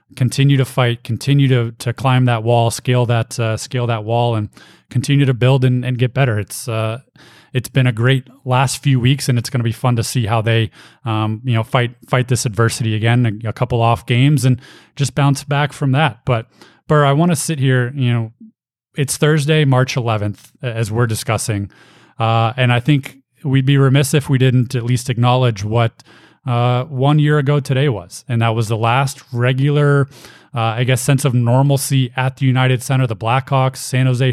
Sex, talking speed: male, 205 wpm